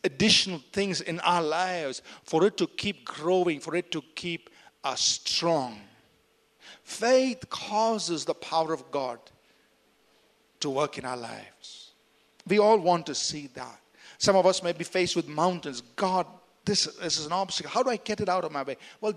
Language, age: English, 50-69